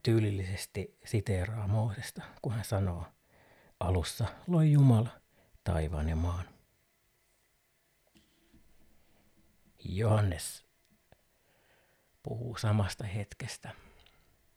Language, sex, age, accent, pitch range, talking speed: Finnish, male, 60-79, native, 95-120 Hz, 65 wpm